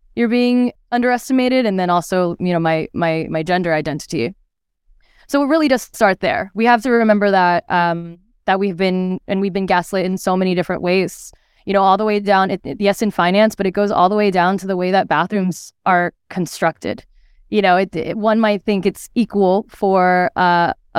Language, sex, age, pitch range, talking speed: English, female, 20-39, 180-225 Hz, 210 wpm